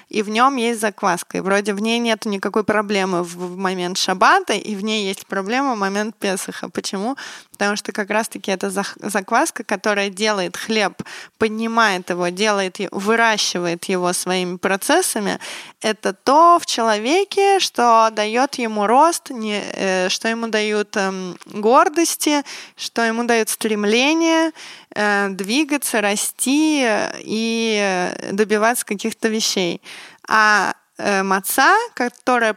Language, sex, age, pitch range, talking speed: Russian, female, 20-39, 195-230 Hz, 120 wpm